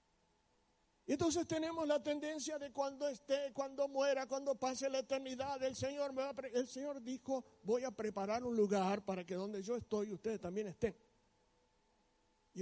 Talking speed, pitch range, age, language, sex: 170 wpm, 185-270 Hz, 60-79, Spanish, male